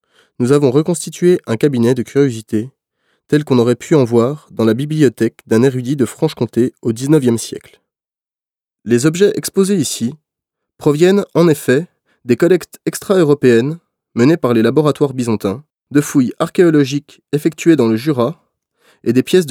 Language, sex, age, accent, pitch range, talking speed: French, male, 20-39, French, 120-165 Hz, 150 wpm